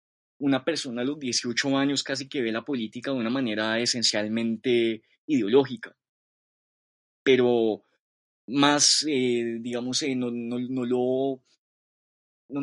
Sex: male